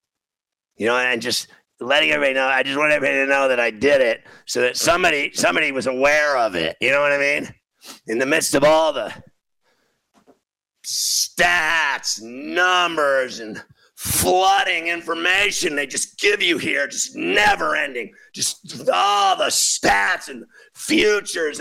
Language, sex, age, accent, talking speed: English, male, 50-69, American, 155 wpm